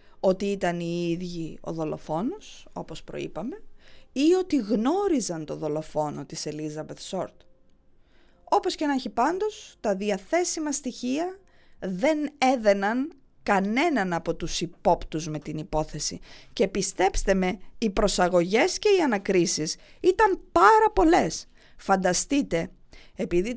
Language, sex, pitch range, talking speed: English, female, 175-280 Hz, 115 wpm